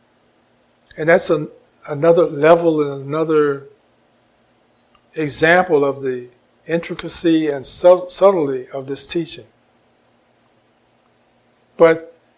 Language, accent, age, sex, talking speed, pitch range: English, American, 50-69, male, 80 wpm, 135-165 Hz